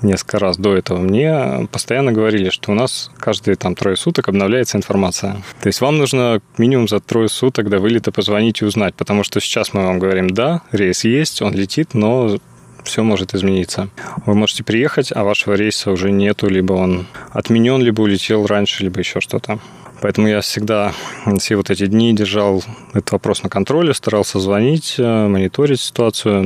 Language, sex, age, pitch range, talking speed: Russian, male, 20-39, 95-115 Hz, 175 wpm